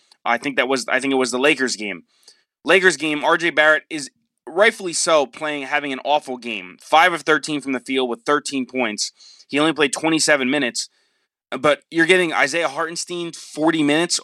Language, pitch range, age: English, 135-180 Hz, 20-39